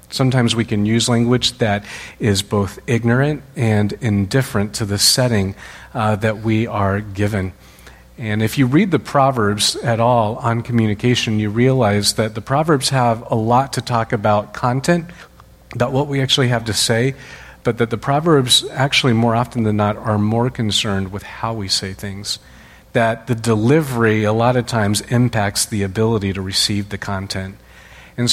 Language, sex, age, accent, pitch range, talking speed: English, male, 40-59, American, 100-120 Hz, 170 wpm